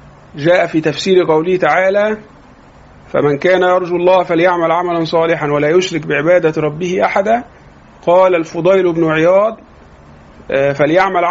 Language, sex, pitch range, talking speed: Arabic, male, 160-215 Hz, 115 wpm